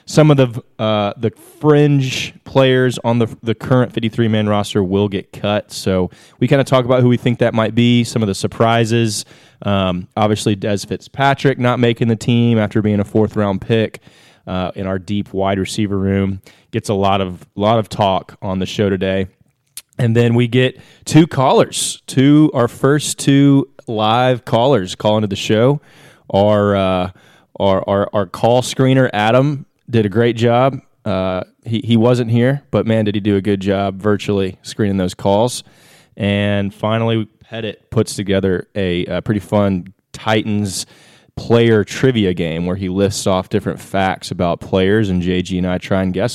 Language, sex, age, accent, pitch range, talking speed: English, male, 20-39, American, 100-125 Hz, 175 wpm